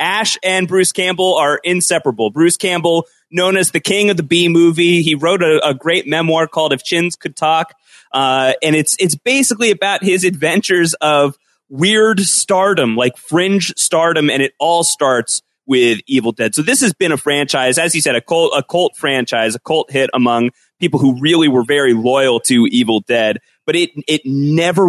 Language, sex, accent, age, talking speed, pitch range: English, male, American, 30-49, 190 wpm, 130-180 Hz